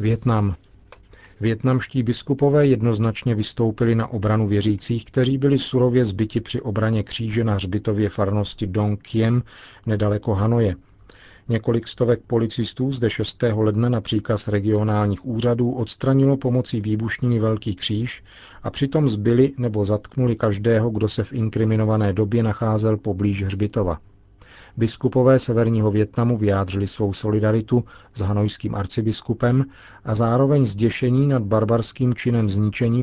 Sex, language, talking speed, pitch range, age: male, Czech, 120 wpm, 105-120 Hz, 40-59